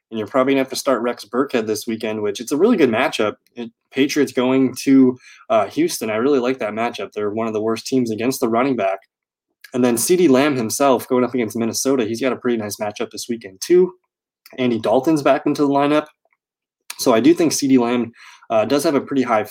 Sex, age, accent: male, 20-39, American